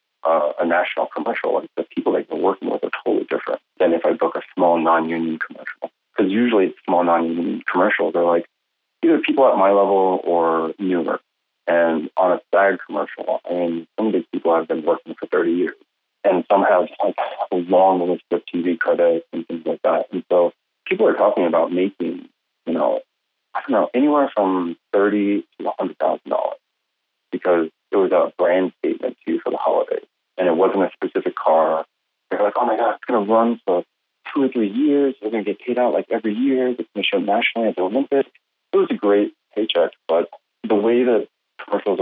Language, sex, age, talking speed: English, male, 30-49, 210 wpm